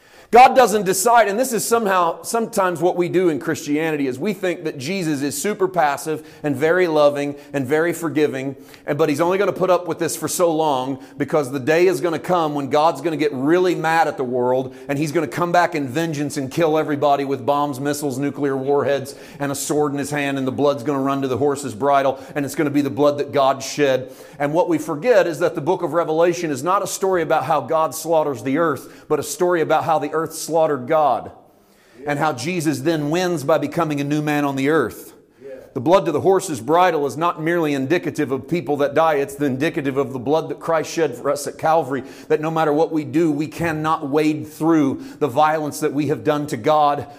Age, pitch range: 40-59, 140-170 Hz